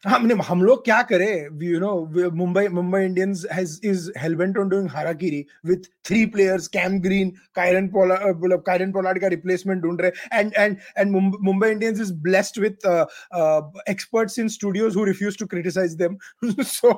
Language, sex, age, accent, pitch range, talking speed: English, male, 20-39, Indian, 185-240 Hz, 140 wpm